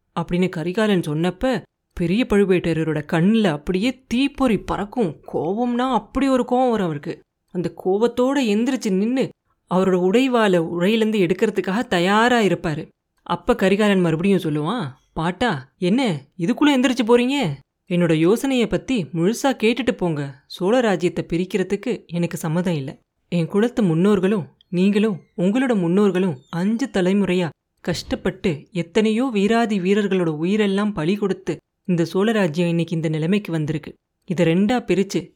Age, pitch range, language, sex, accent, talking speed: 30-49, 175-220 Hz, Tamil, female, native, 120 wpm